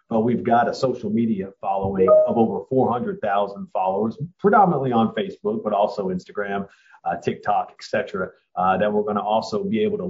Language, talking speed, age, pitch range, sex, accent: English, 180 wpm, 30-49, 115-190 Hz, male, American